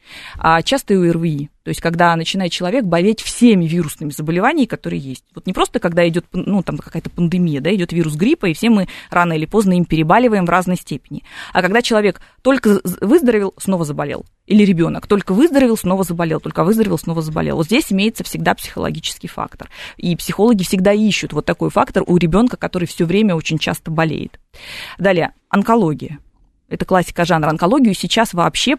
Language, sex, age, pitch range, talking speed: Russian, female, 20-39, 165-205 Hz, 175 wpm